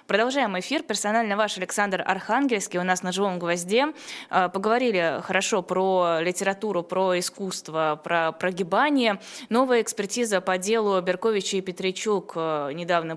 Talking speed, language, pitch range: 125 wpm, Russian, 180-225 Hz